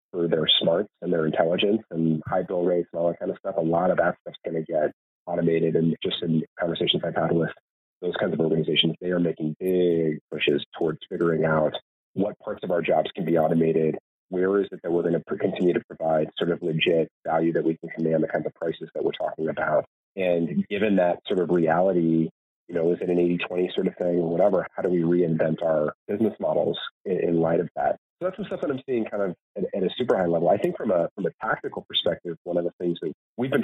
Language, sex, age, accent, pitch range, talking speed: English, male, 30-49, American, 80-90 Hz, 240 wpm